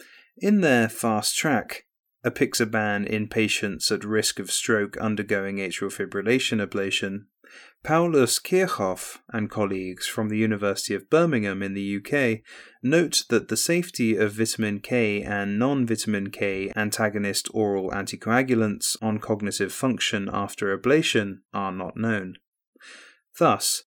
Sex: male